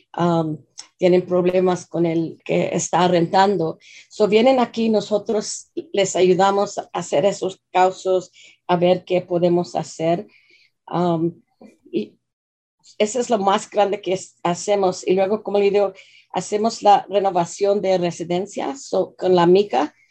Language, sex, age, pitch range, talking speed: English, female, 40-59, 175-205 Hz, 135 wpm